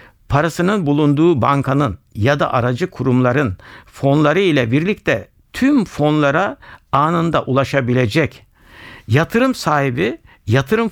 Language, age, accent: Turkish, 60-79, native